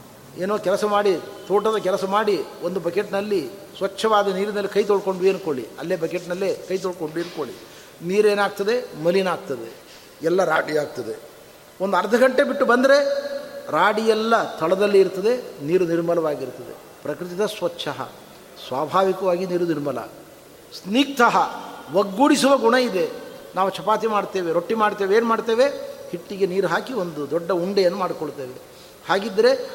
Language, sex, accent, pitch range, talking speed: Kannada, male, native, 185-250 Hz, 115 wpm